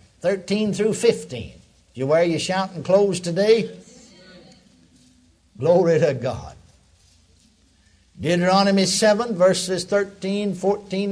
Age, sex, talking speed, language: 60-79, male, 95 wpm, English